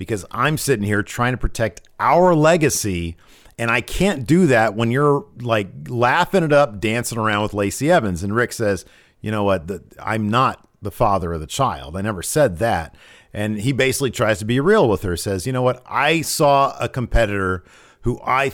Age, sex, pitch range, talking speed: 40-59, male, 100-135 Hz, 195 wpm